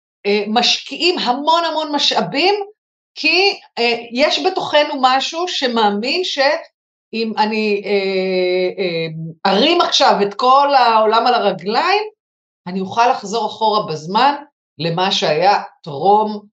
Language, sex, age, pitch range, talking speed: Hebrew, female, 50-69, 175-270 Hz, 95 wpm